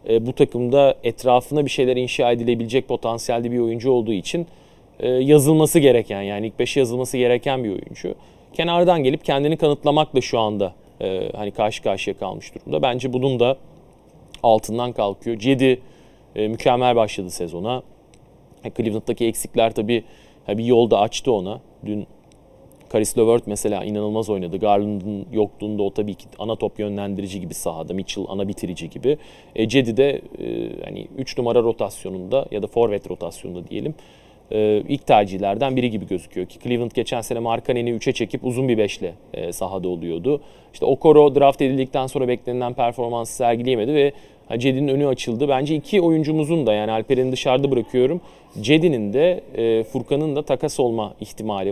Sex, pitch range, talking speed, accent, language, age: male, 105-135 Hz, 150 wpm, native, Turkish, 40-59